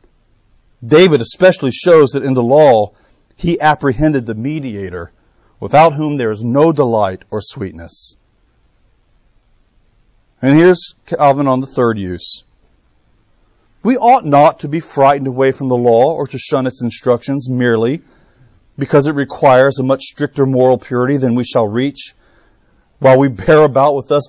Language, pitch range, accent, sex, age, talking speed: English, 125-160 Hz, American, male, 40-59, 150 wpm